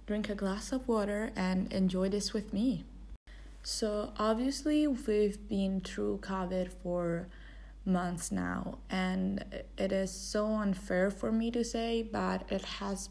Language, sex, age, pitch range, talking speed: English, female, 20-39, 180-210 Hz, 140 wpm